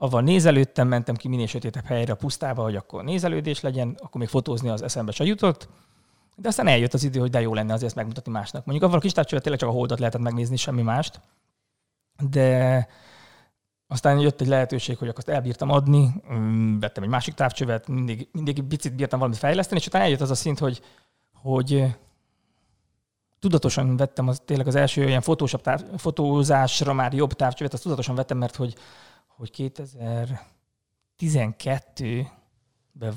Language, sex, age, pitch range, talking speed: Hungarian, male, 20-39, 115-140 Hz, 170 wpm